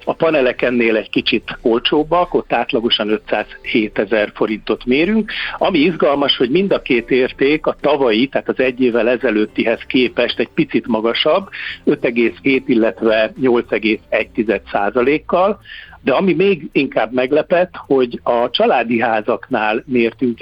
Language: Hungarian